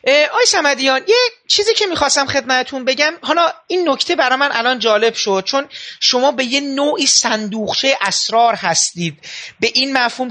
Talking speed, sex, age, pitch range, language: 155 wpm, male, 30-49, 210-270 Hz, Persian